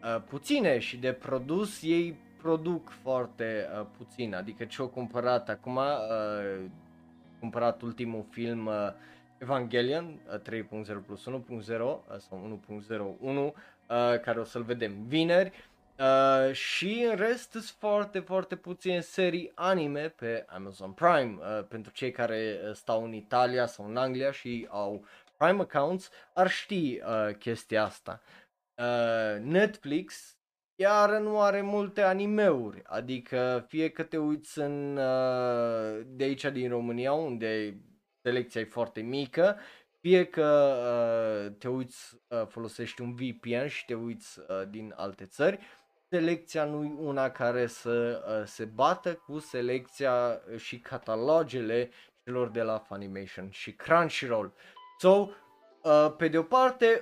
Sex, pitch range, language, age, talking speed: male, 110-160 Hz, Romanian, 20-39, 125 wpm